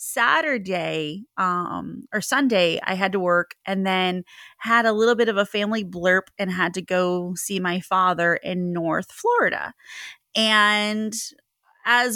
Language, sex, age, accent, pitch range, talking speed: English, female, 30-49, American, 170-200 Hz, 150 wpm